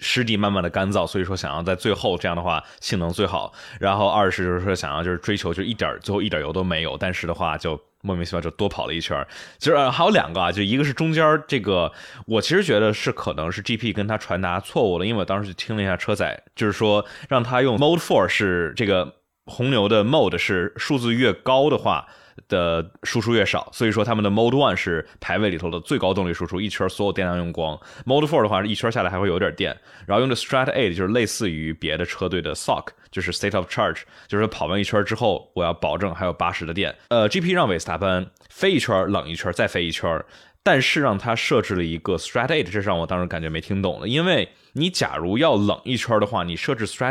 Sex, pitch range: male, 90-115 Hz